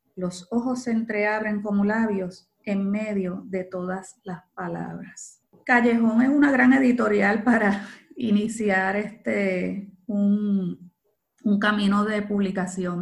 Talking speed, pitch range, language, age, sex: 110 wpm, 195-230 Hz, Spanish, 30-49, female